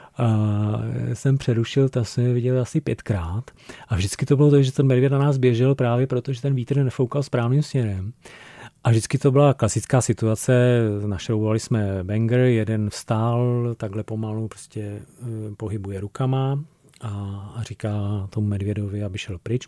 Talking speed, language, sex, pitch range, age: 150 wpm, Czech, male, 110-130 Hz, 30-49